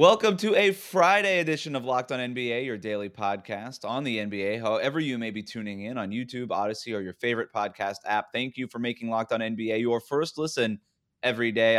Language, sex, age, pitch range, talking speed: English, male, 20-39, 110-150 Hz, 210 wpm